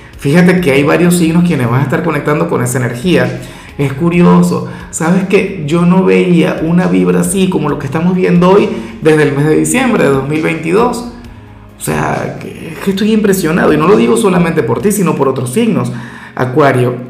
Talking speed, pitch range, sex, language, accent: 185 wpm, 135-185 Hz, male, Spanish, Venezuelan